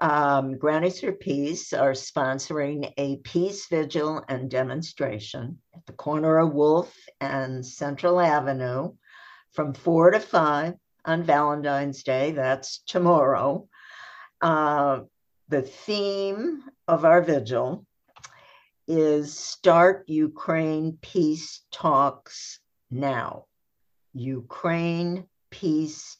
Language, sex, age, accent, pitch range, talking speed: English, female, 60-79, American, 130-165 Hz, 95 wpm